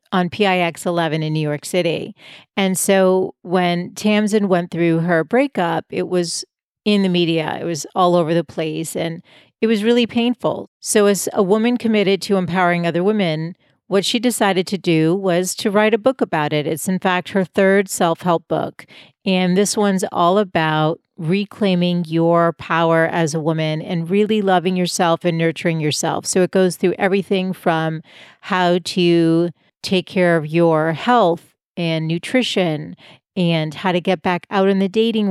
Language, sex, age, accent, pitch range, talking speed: English, female, 40-59, American, 170-200 Hz, 175 wpm